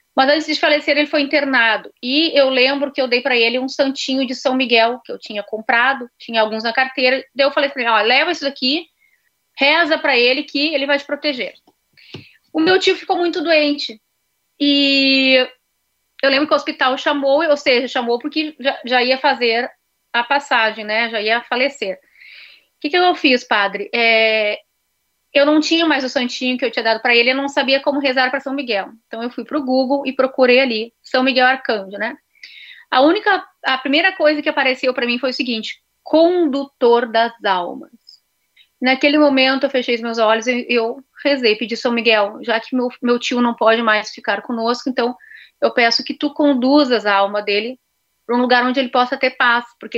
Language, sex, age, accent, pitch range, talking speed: Portuguese, female, 30-49, Brazilian, 235-285 Hz, 205 wpm